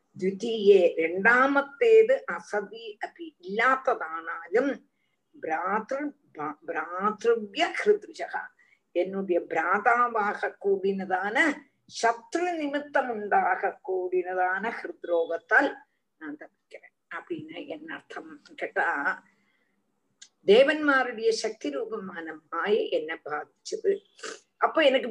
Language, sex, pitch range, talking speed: Tamil, female, 205-310 Hz, 50 wpm